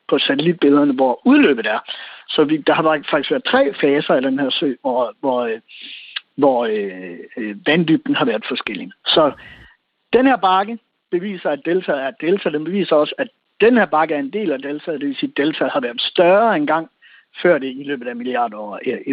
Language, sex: Danish, male